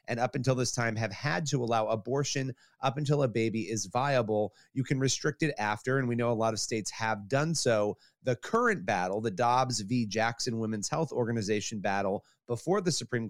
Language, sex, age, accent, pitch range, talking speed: English, male, 30-49, American, 115-145 Hz, 205 wpm